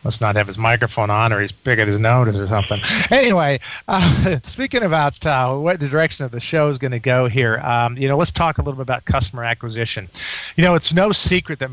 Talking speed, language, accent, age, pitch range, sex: 240 wpm, English, American, 40-59, 120-155 Hz, male